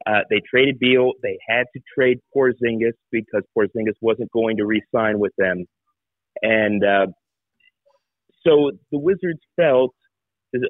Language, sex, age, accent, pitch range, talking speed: English, male, 30-49, American, 115-155 Hz, 135 wpm